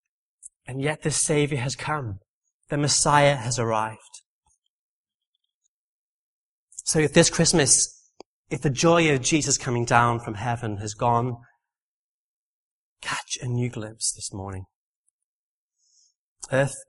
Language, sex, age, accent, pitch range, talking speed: English, male, 30-49, British, 120-150 Hz, 115 wpm